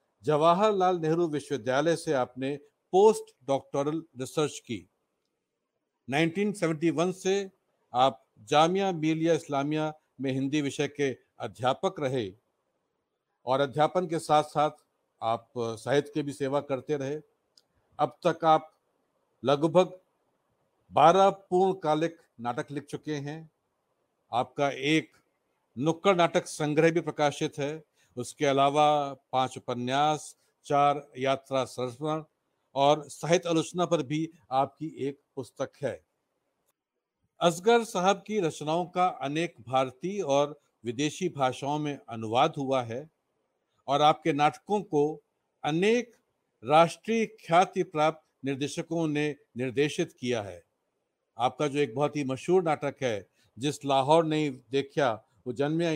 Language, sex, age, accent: Hindi, male, 50-69, native